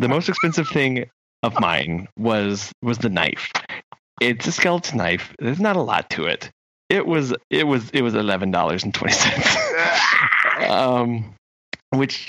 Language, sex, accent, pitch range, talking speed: English, male, American, 105-130 Hz, 155 wpm